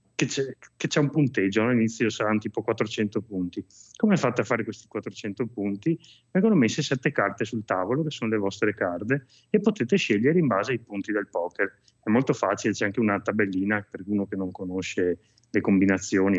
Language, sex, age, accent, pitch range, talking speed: Italian, male, 30-49, native, 105-135 Hz, 185 wpm